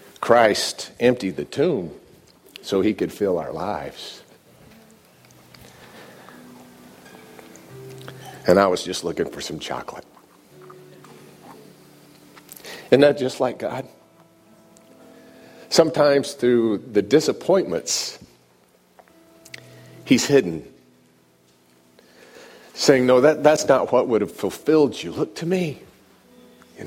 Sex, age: male, 50-69